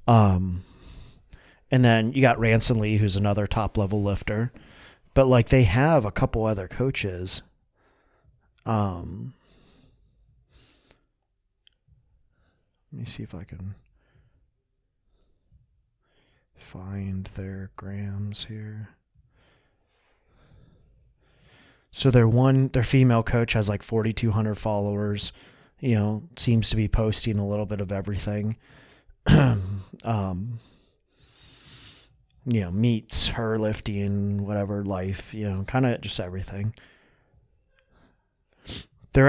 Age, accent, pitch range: 30-49, American, 100-120 Hz